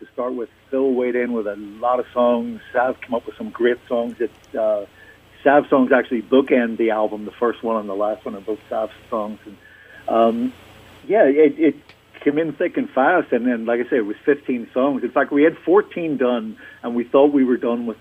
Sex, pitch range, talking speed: male, 110-130 Hz, 225 wpm